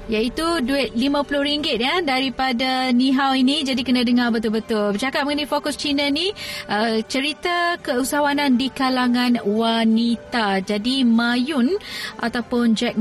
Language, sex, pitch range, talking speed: Malay, female, 220-260 Hz, 125 wpm